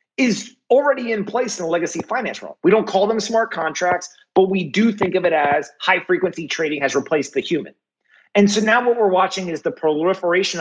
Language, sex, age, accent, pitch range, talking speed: English, male, 30-49, American, 160-210 Hz, 215 wpm